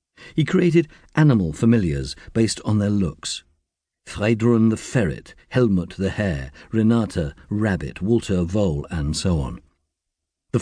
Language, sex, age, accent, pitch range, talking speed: English, male, 50-69, British, 85-115 Hz, 125 wpm